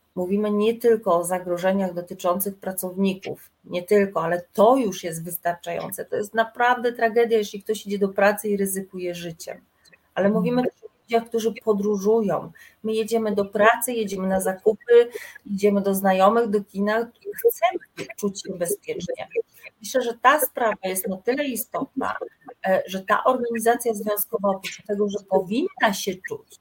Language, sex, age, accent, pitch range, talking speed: Polish, female, 30-49, native, 190-240 Hz, 155 wpm